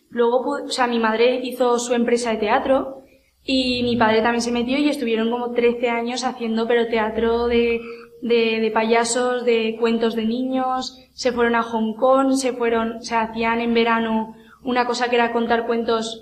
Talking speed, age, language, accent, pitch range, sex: 180 wpm, 20-39, Spanish, Spanish, 230-260 Hz, female